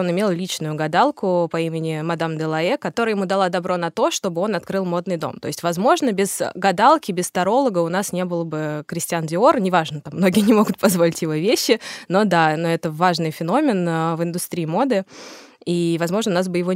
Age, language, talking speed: 20-39, Russian, 205 wpm